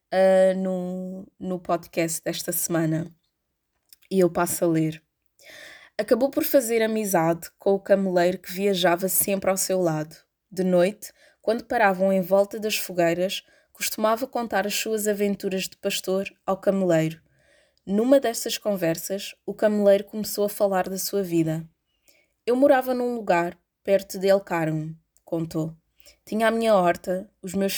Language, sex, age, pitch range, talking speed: Portuguese, female, 20-39, 175-205 Hz, 145 wpm